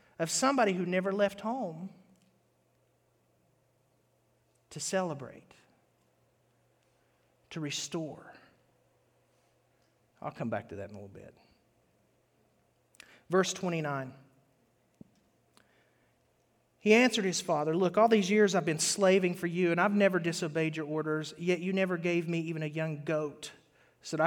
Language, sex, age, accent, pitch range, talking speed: English, male, 40-59, American, 145-180 Hz, 125 wpm